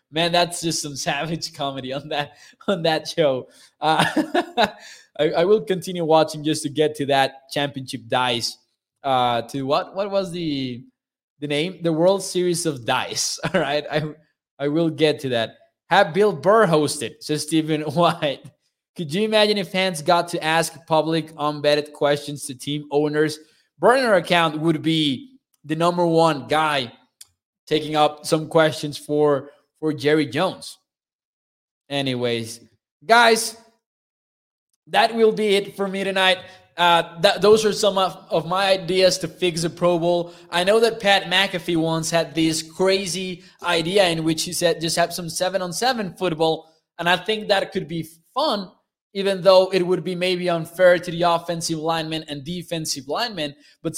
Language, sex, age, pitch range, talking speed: English, male, 20-39, 150-190 Hz, 165 wpm